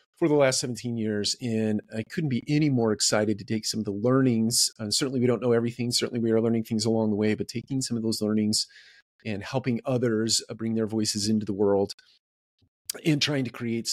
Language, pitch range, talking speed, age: English, 100-115 Hz, 225 wpm, 40-59